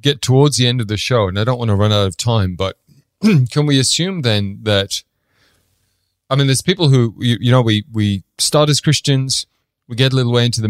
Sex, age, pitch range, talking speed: male, 30-49, 100-125 Hz, 235 wpm